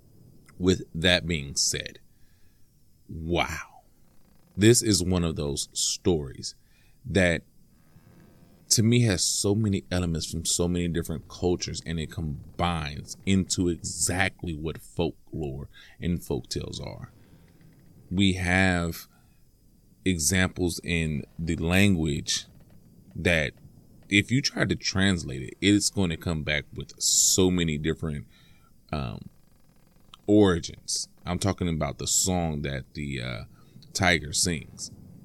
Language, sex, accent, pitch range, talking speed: English, male, American, 85-105 Hz, 115 wpm